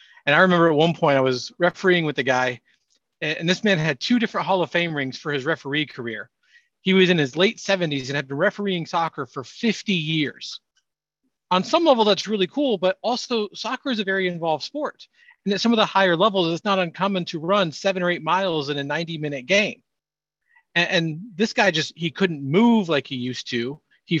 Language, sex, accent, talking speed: English, male, American, 215 wpm